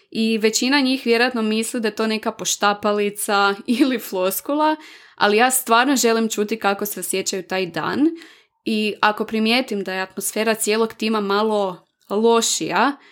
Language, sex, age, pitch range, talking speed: Croatian, female, 20-39, 195-235 Hz, 145 wpm